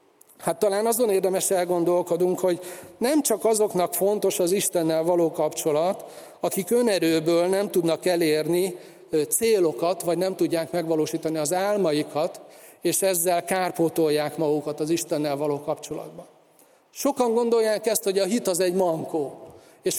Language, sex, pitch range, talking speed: Hungarian, male, 170-215 Hz, 130 wpm